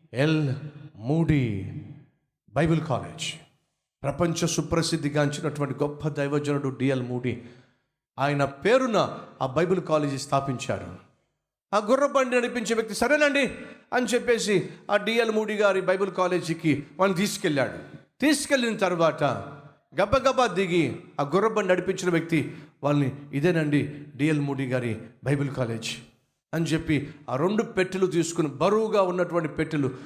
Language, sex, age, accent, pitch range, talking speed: Telugu, male, 50-69, native, 135-180 Hz, 110 wpm